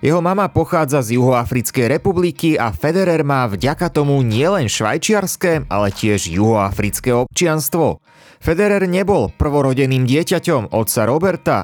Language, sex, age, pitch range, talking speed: Slovak, male, 30-49, 115-165 Hz, 120 wpm